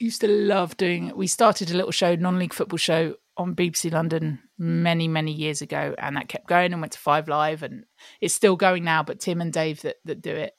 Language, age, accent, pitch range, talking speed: English, 30-49, British, 170-225 Hz, 240 wpm